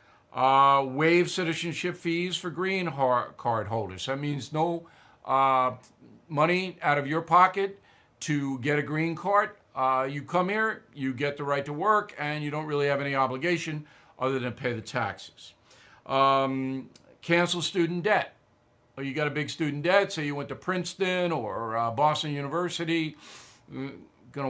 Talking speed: 155 wpm